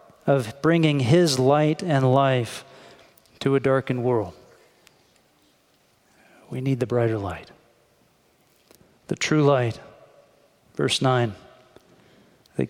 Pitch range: 130-155 Hz